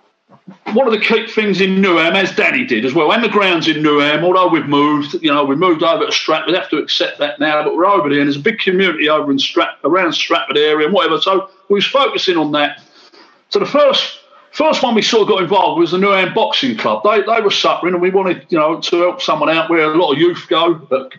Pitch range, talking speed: 160-215 Hz, 255 wpm